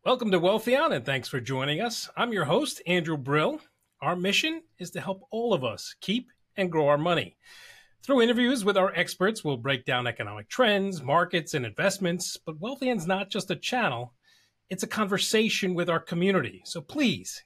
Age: 40-59